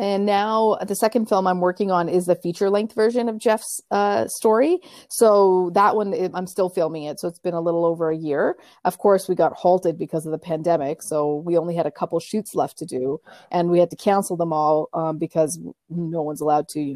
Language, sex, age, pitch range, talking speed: English, female, 30-49, 160-195 Hz, 235 wpm